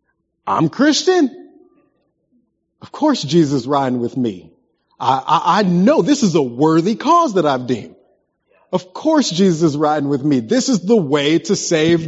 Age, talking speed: 30-49, 165 wpm